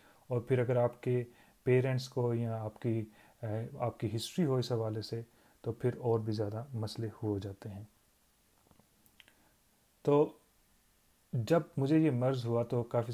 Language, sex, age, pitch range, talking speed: Urdu, male, 30-49, 110-125 Hz, 160 wpm